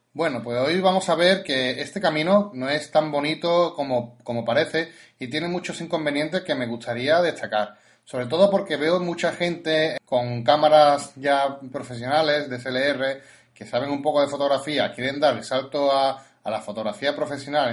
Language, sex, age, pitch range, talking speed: Spanish, male, 30-49, 120-155 Hz, 175 wpm